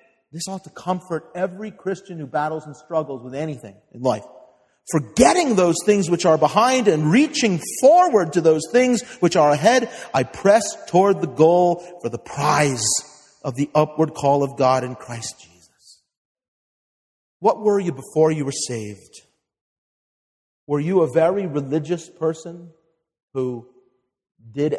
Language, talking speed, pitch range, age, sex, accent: English, 150 wpm, 130-170 Hz, 40-59, male, American